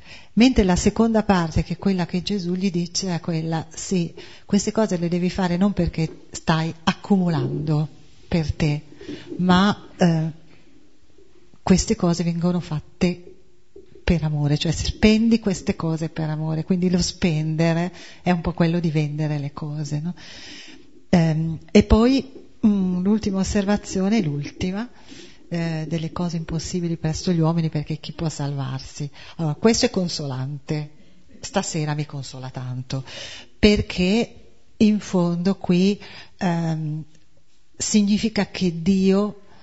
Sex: female